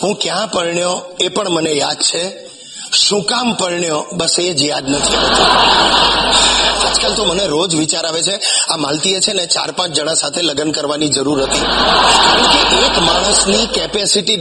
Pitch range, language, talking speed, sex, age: 155-215 Hz, Gujarati, 160 wpm, male, 30-49